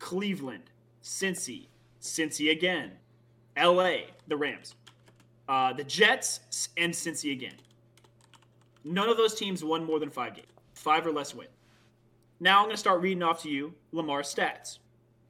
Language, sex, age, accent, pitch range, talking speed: English, male, 20-39, American, 120-185 Hz, 145 wpm